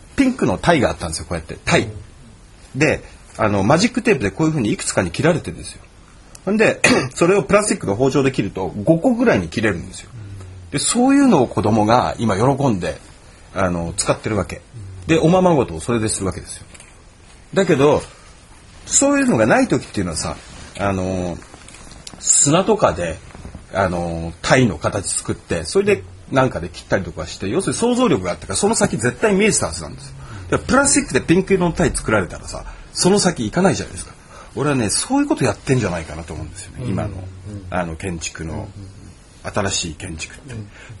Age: 40-59